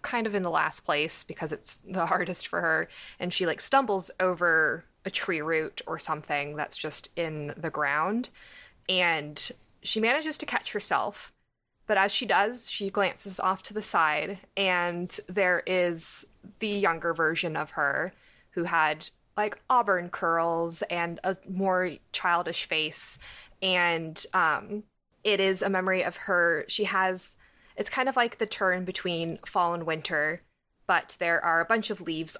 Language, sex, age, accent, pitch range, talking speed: English, female, 20-39, American, 160-195 Hz, 165 wpm